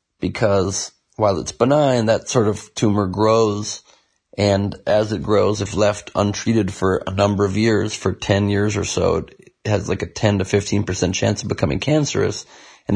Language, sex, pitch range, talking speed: English, male, 100-115 Hz, 175 wpm